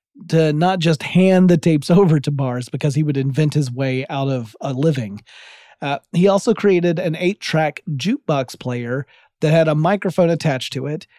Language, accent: English, American